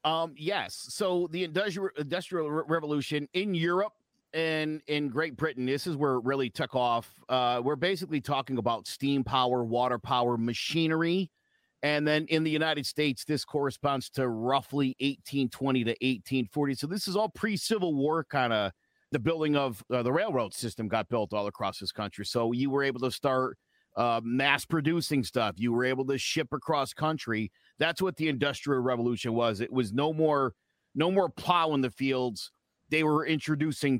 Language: English